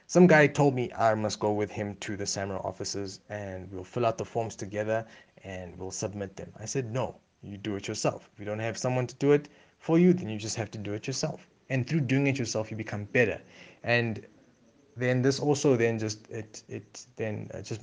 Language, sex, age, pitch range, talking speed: English, male, 20-39, 100-125 Hz, 225 wpm